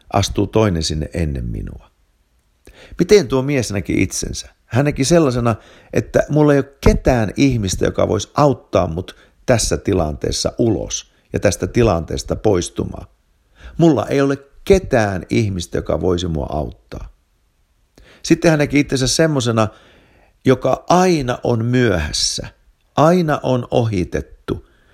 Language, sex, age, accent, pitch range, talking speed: Finnish, male, 50-69, native, 90-140 Hz, 125 wpm